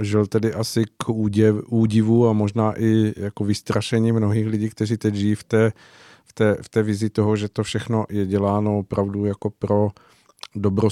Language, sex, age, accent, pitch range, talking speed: Czech, male, 50-69, native, 105-115 Hz, 160 wpm